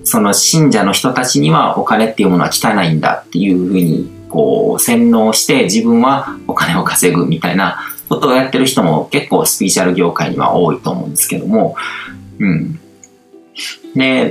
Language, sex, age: Japanese, male, 40-59